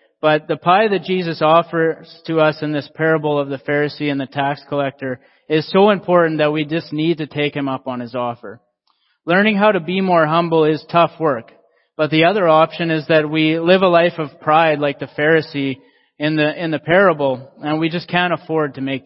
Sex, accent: male, American